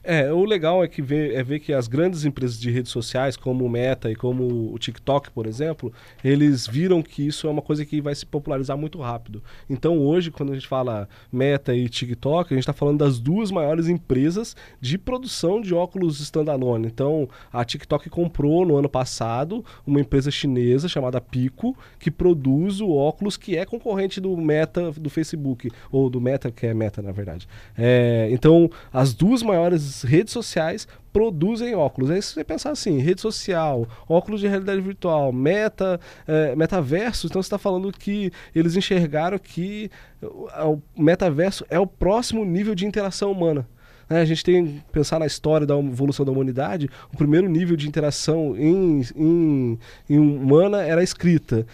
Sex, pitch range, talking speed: male, 135-175 Hz, 180 wpm